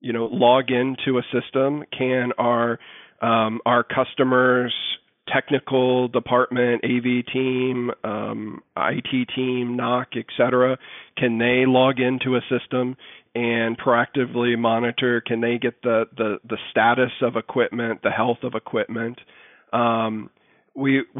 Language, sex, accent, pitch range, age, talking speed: English, male, American, 115-125 Hz, 40-59, 130 wpm